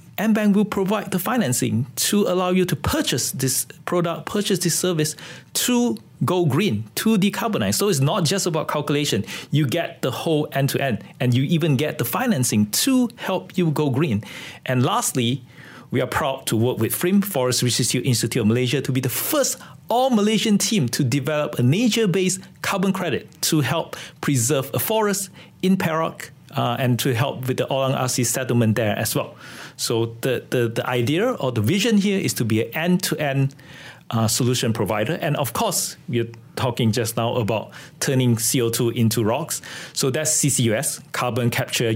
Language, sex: English, male